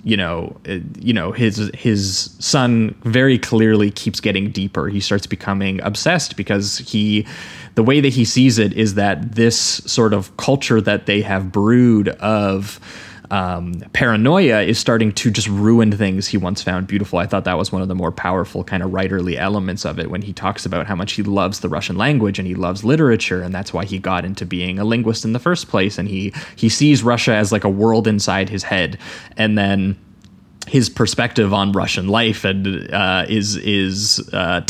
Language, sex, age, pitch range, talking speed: English, male, 20-39, 95-110 Hz, 195 wpm